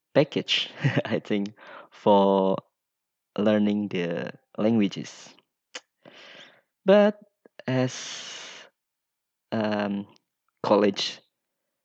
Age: 20-39